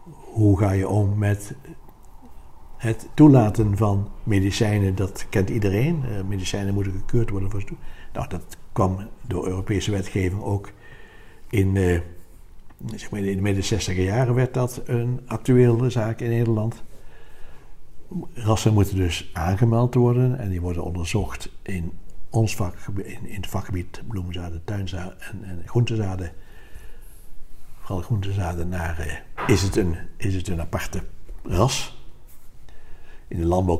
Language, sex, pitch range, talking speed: Dutch, male, 90-115 Hz, 130 wpm